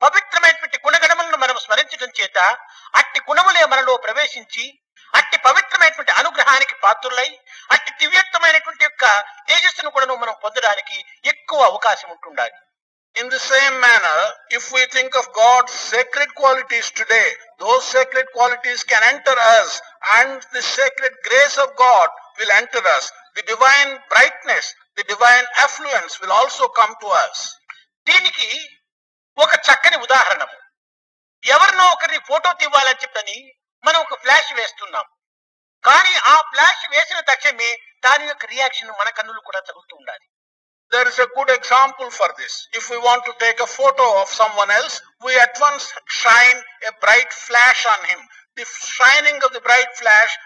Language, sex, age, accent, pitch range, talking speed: English, male, 50-69, Indian, 245-315 Hz, 85 wpm